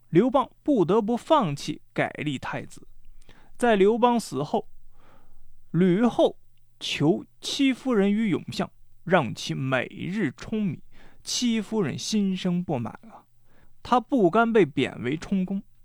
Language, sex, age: Chinese, male, 20-39